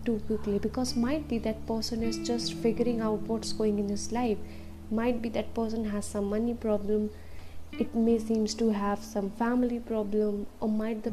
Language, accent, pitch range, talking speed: English, Indian, 200-230 Hz, 190 wpm